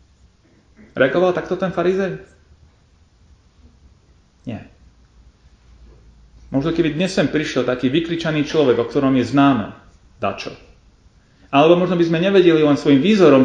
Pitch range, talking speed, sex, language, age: 115-165 Hz, 115 wpm, male, Slovak, 30-49